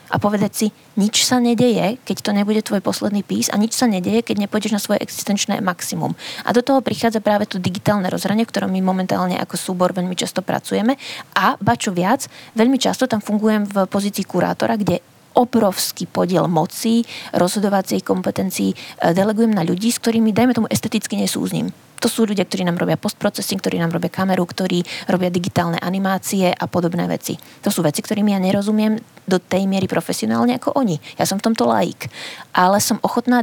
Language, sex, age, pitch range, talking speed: Czech, female, 20-39, 180-225 Hz, 185 wpm